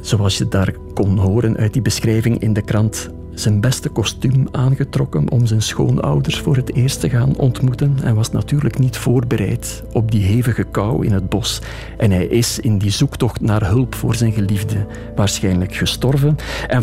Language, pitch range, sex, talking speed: Dutch, 100-125 Hz, male, 180 wpm